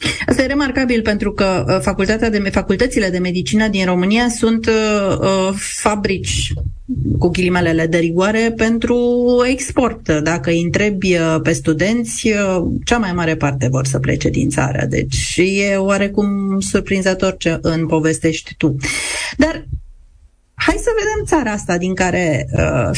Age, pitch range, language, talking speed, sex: 30-49, 165-220 Hz, Romanian, 140 wpm, female